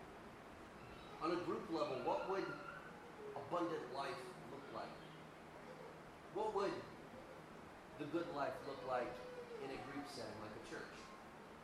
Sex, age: male, 30-49